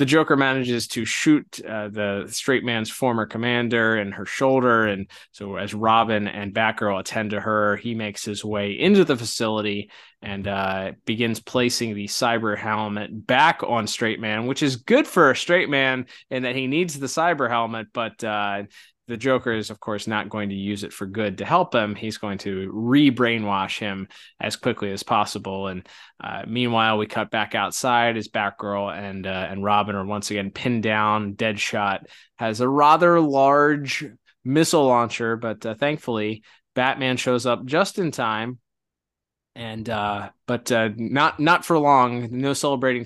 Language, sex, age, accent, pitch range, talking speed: English, male, 20-39, American, 105-130 Hz, 175 wpm